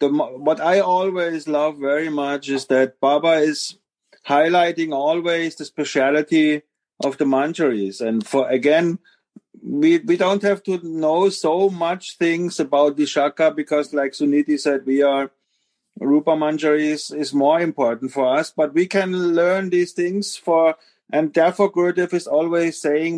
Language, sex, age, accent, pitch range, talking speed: English, male, 50-69, German, 145-180 Hz, 155 wpm